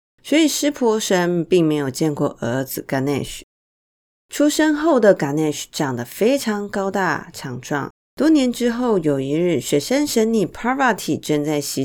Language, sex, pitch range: Chinese, female, 150-215 Hz